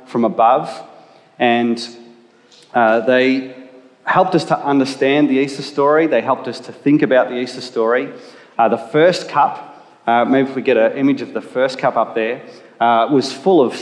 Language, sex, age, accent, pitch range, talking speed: English, male, 30-49, Australian, 120-140 Hz, 180 wpm